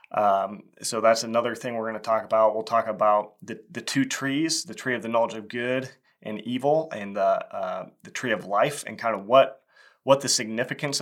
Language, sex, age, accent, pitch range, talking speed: English, male, 30-49, American, 105-120 Hz, 220 wpm